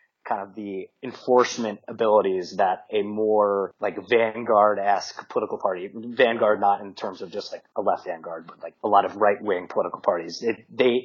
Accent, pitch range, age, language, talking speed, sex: American, 105-125 Hz, 30-49, English, 175 wpm, male